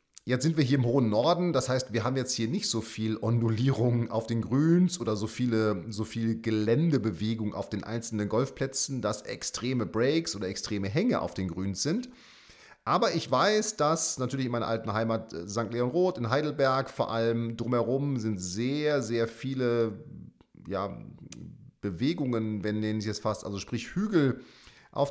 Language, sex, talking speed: German, male, 170 wpm